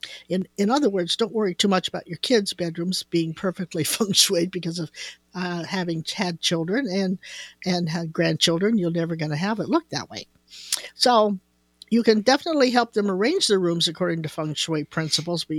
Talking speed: 195 wpm